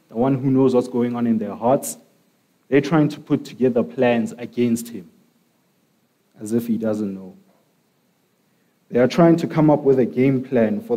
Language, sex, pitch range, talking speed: English, male, 105-135 Hz, 185 wpm